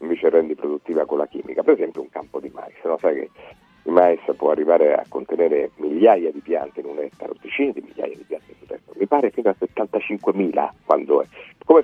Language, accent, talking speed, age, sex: Italian, native, 220 wpm, 50-69, male